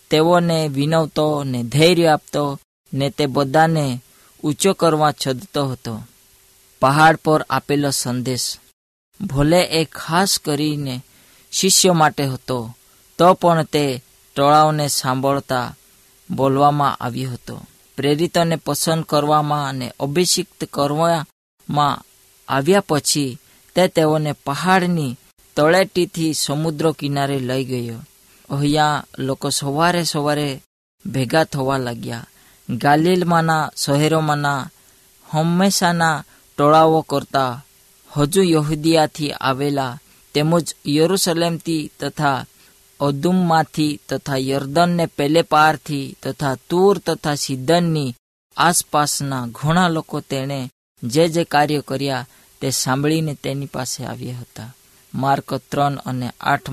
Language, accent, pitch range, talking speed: Hindi, native, 135-160 Hz, 70 wpm